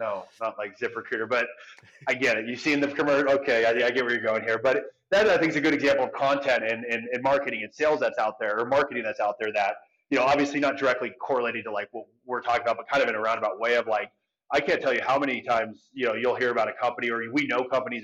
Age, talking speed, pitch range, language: 30-49, 280 wpm, 110-140 Hz, English